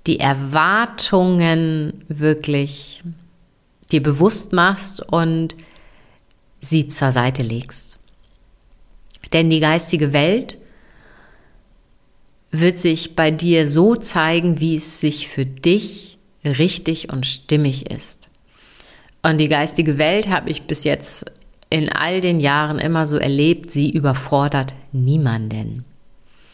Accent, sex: German, female